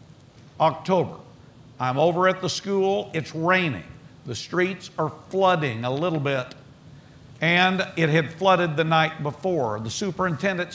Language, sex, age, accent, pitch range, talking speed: English, male, 50-69, American, 135-175 Hz, 135 wpm